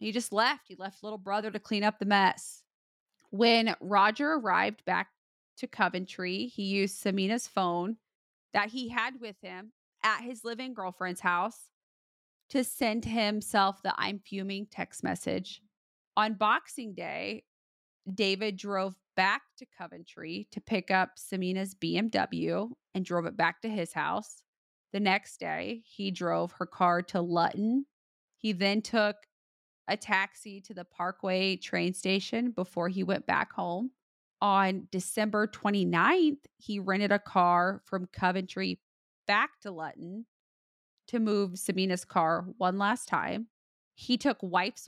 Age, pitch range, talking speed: 30-49, 185-220 Hz, 140 wpm